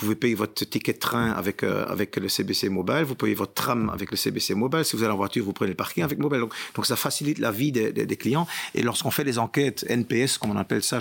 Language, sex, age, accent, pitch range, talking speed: French, male, 50-69, French, 105-145 Hz, 285 wpm